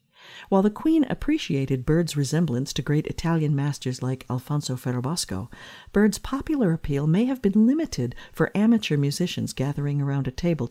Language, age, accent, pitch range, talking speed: English, 50-69, American, 140-195 Hz, 150 wpm